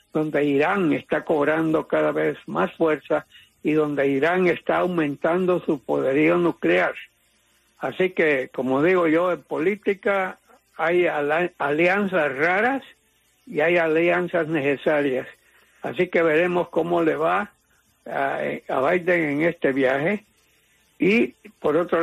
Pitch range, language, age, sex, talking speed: 145-175 Hz, English, 60-79, male, 120 wpm